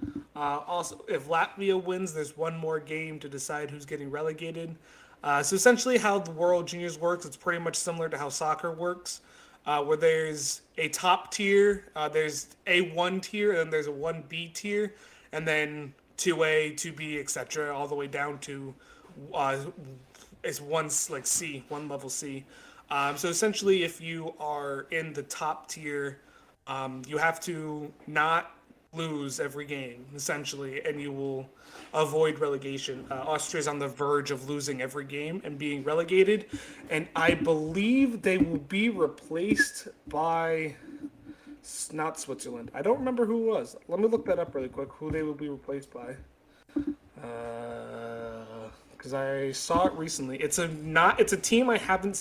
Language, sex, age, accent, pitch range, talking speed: English, male, 20-39, American, 145-175 Hz, 160 wpm